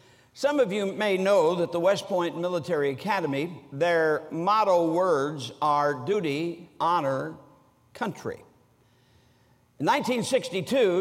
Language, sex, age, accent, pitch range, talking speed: English, male, 60-79, American, 140-205 Hz, 110 wpm